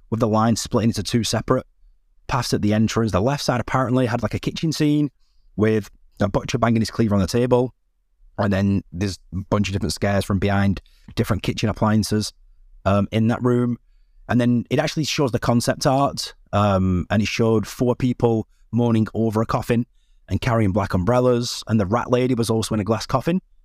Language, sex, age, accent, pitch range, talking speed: English, male, 20-39, British, 100-120 Hz, 195 wpm